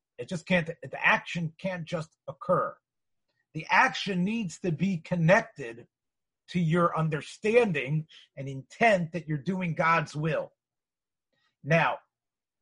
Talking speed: 120 wpm